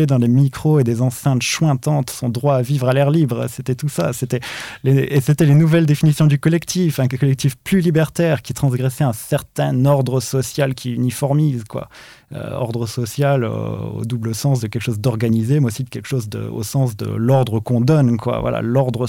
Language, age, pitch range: French, 20-39, 115-140 Hz